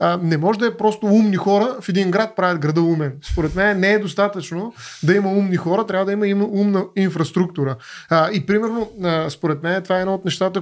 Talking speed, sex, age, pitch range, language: 205 wpm, male, 20-39, 165-205 Hz, Bulgarian